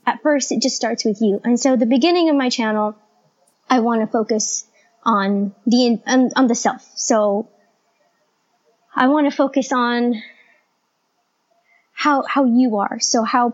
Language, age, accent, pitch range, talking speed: English, 20-39, American, 220-265 Hz, 160 wpm